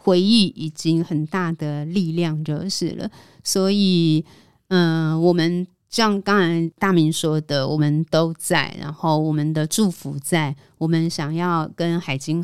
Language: Chinese